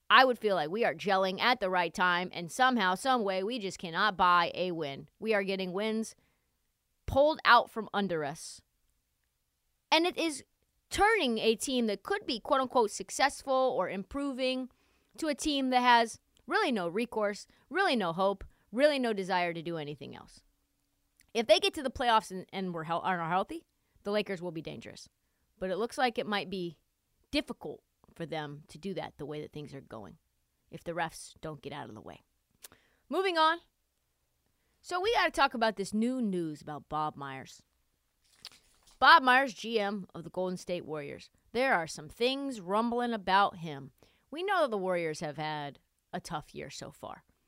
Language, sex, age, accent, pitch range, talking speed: English, female, 30-49, American, 165-255 Hz, 185 wpm